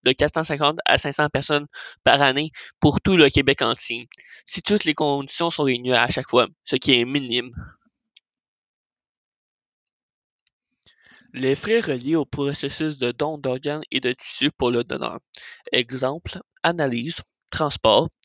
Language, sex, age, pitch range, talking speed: French, male, 20-39, 130-160 Hz, 140 wpm